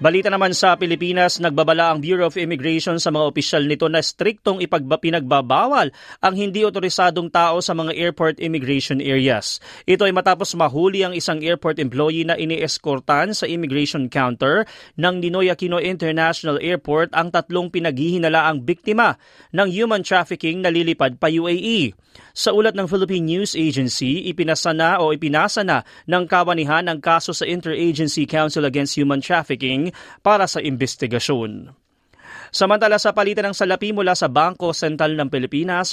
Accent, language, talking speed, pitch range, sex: native, Filipino, 145 wpm, 145-185 Hz, male